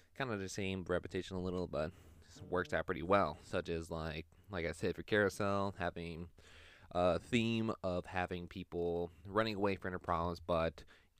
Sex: male